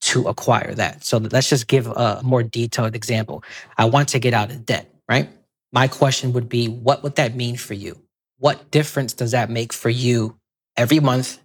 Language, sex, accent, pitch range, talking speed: English, male, American, 115-140 Hz, 200 wpm